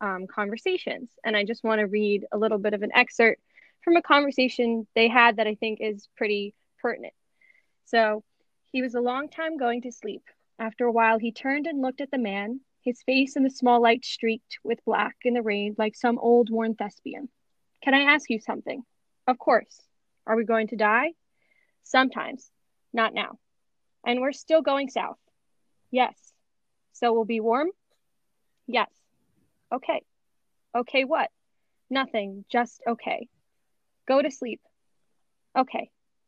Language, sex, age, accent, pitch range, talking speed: English, female, 20-39, American, 220-265 Hz, 160 wpm